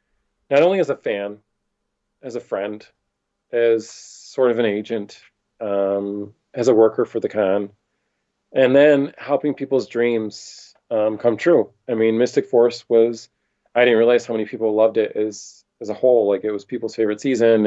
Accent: American